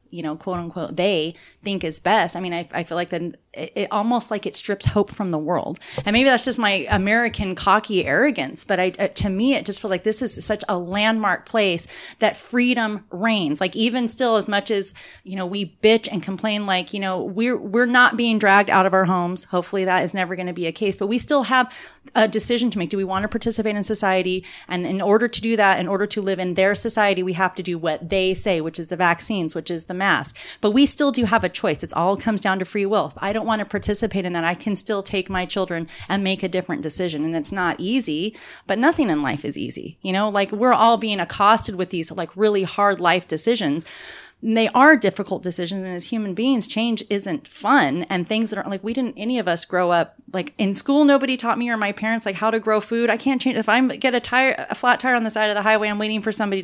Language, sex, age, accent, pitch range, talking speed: English, female, 30-49, American, 185-225 Hz, 255 wpm